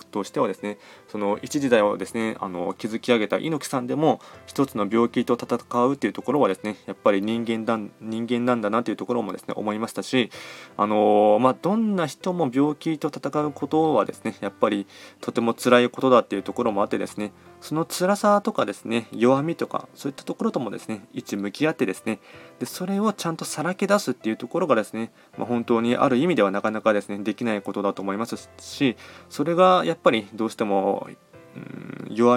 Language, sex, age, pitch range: Japanese, male, 20-39, 105-140 Hz